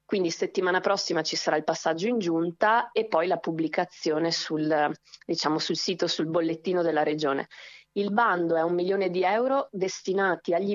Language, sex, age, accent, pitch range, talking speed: Italian, female, 20-39, native, 160-185 Hz, 170 wpm